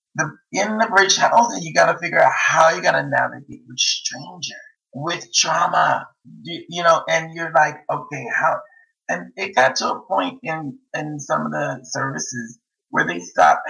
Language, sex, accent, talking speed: English, male, American, 185 wpm